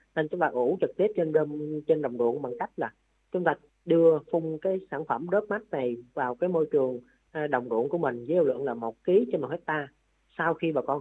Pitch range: 135-170 Hz